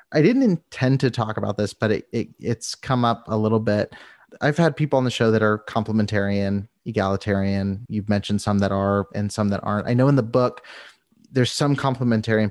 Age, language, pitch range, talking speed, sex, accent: 30-49, English, 105-120 Hz, 205 wpm, male, American